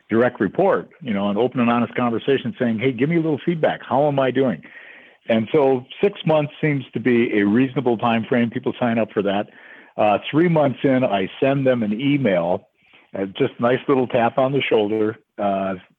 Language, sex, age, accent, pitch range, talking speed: English, male, 60-79, American, 100-130 Hz, 200 wpm